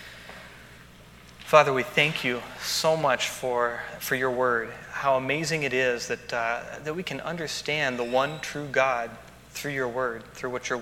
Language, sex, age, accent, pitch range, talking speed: English, male, 30-49, American, 115-130 Hz, 165 wpm